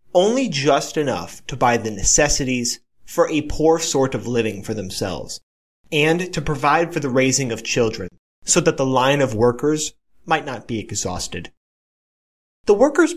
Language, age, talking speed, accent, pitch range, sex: English, 30-49, 160 wpm, American, 120-170 Hz, male